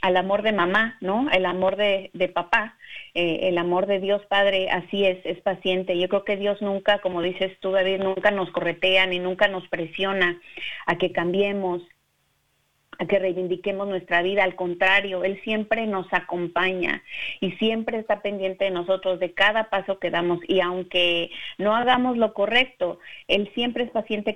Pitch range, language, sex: 180-210 Hz, Spanish, female